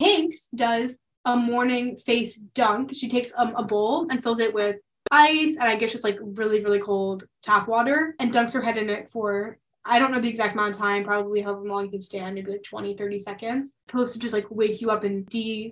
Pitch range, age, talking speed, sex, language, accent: 210-250 Hz, 10-29, 230 wpm, female, English, American